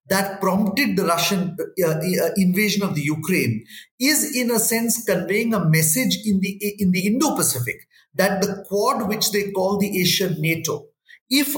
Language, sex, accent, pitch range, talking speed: English, male, Indian, 170-210 Hz, 170 wpm